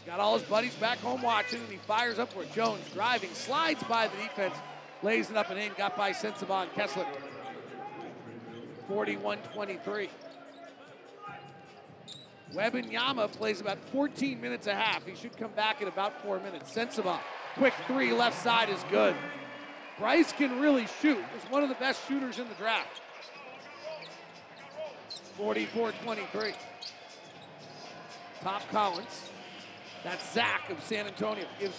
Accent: American